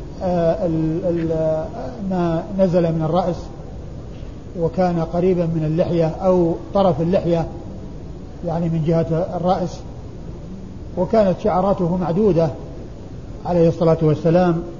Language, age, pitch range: Arabic, 50-69, 165-185 Hz